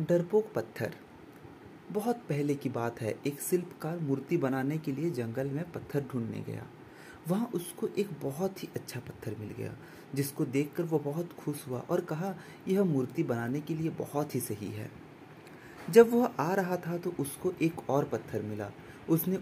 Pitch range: 115-150 Hz